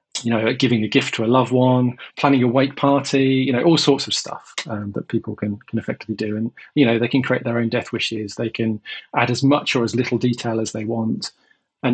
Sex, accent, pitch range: male, British, 110-130 Hz